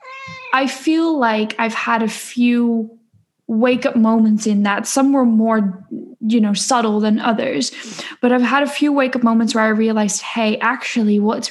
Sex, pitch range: female, 215-250 Hz